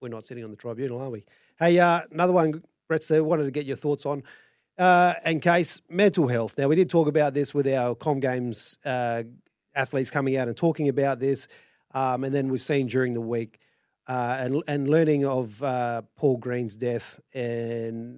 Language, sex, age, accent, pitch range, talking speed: English, male, 30-49, Australian, 120-145 Hz, 200 wpm